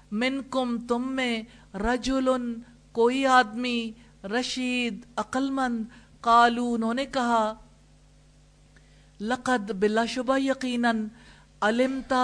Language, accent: English, Indian